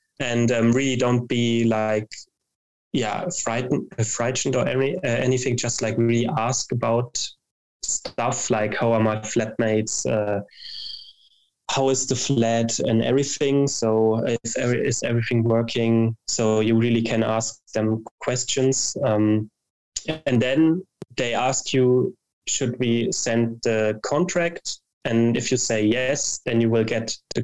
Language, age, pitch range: English, 20-39, 115-125 Hz